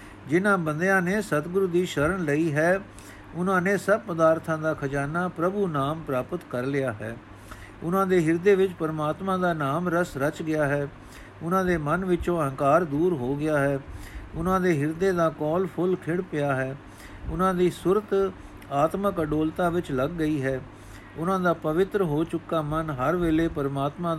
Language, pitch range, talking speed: Punjabi, 135-175 Hz, 150 wpm